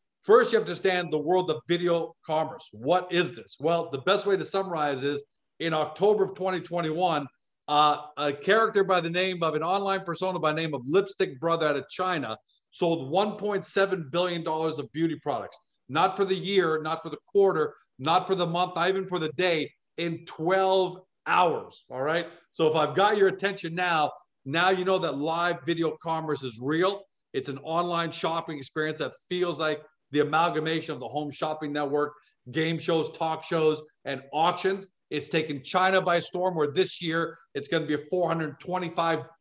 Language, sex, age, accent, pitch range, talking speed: English, male, 50-69, American, 155-180 Hz, 185 wpm